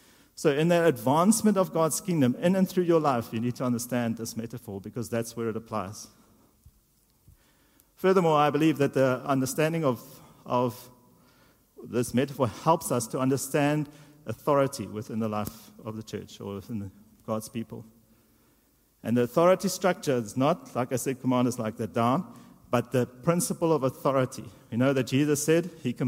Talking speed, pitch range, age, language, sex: 165 wpm, 120-150 Hz, 50-69, English, male